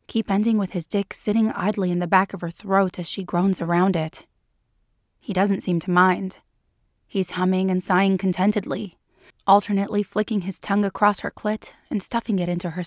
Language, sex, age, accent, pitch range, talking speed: English, female, 20-39, American, 180-205 Hz, 185 wpm